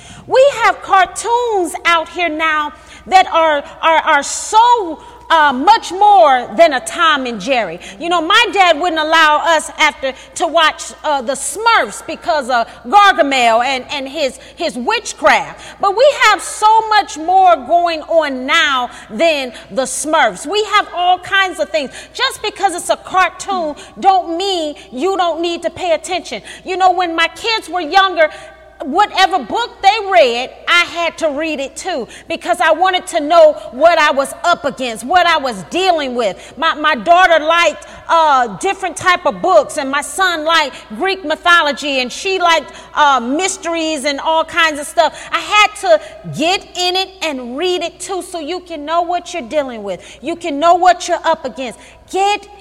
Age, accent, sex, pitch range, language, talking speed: 40-59, American, female, 300-365 Hz, English, 175 wpm